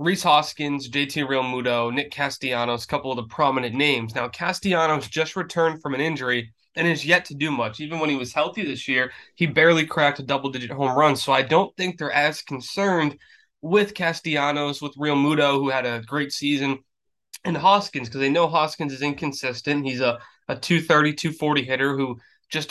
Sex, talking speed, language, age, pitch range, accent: male, 190 wpm, English, 20-39, 135-160 Hz, American